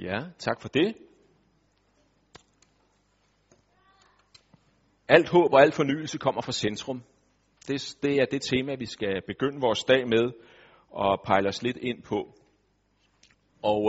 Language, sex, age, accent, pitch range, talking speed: Danish, male, 40-59, native, 105-140 Hz, 130 wpm